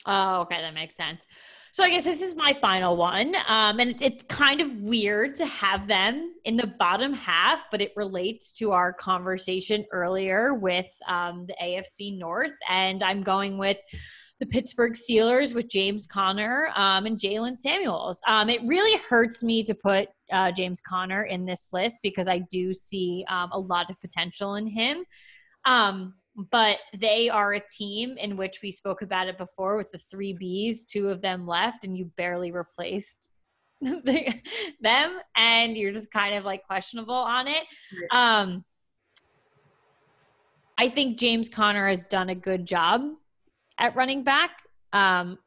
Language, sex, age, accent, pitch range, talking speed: English, female, 20-39, American, 185-230 Hz, 165 wpm